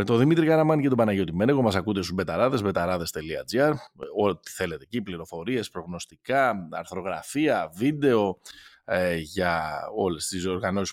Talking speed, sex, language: 130 wpm, male, Greek